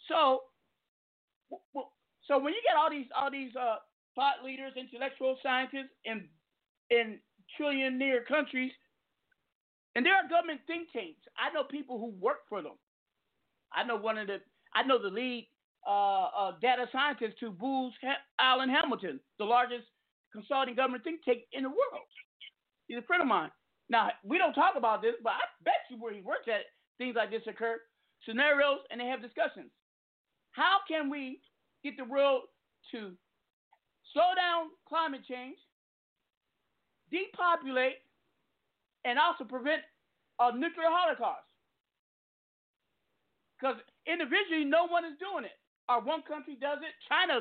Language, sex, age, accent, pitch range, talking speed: English, male, 50-69, American, 240-315 Hz, 150 wpm